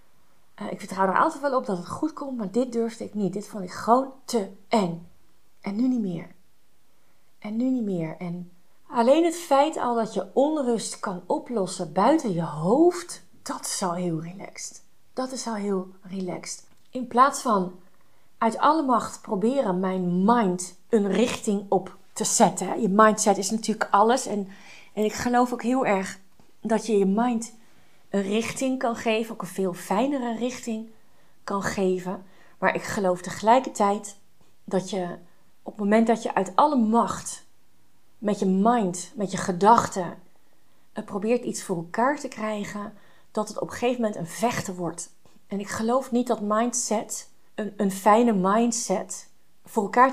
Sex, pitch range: female, 190-235 Hz